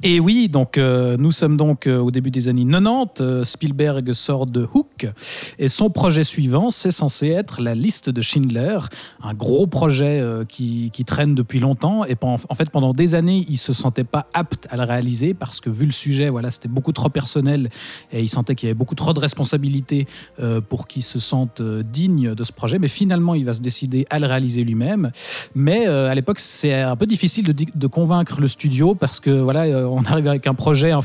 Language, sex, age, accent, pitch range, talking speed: French, male, 40-59, French, 125-155 Hz, 225 wpm